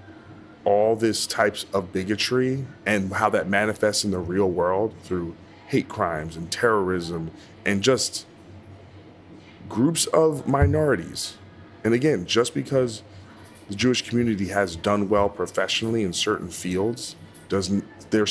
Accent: American